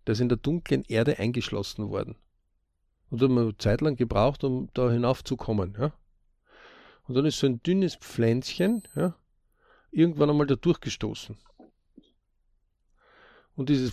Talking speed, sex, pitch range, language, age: 140 wpm, male, 110-150 Hz, German, 50-69